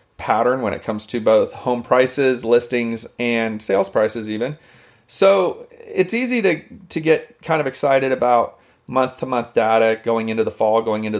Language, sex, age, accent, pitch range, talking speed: English, male, 30-49, American, 110-130 Hz, 165 wpm